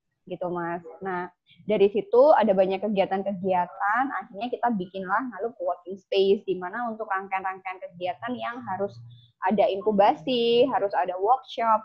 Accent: native